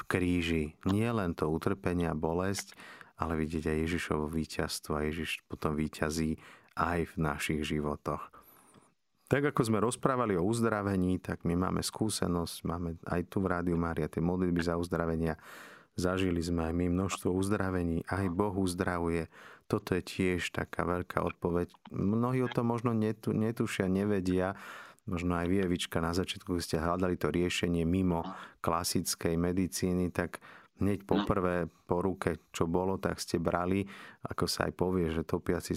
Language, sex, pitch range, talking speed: Slovak, male, 85-95 Hz, 155 wpm